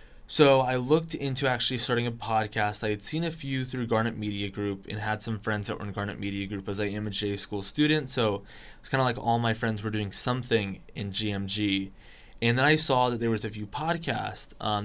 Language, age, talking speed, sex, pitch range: English, 20-39, 235 wpm, male, 105-125 Hz